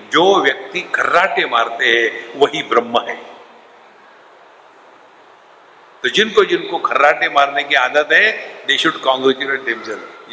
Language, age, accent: English, 60-79, Indian